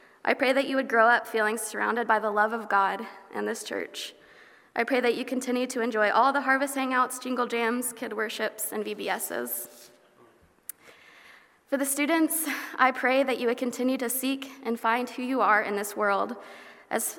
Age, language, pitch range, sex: 20-39, English, 215-255 Hz, female